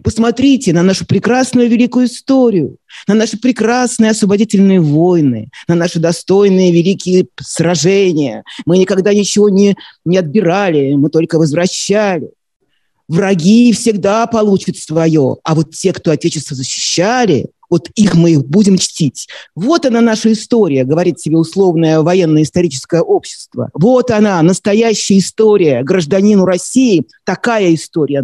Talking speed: 125 wpm